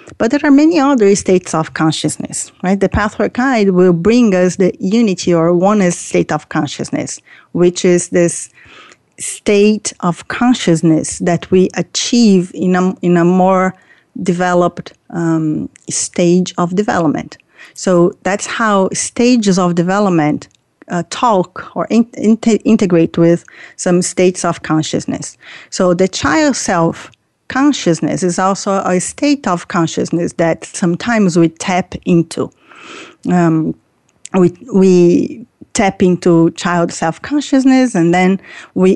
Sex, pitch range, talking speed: female, 170-215 Hz, 125 wpm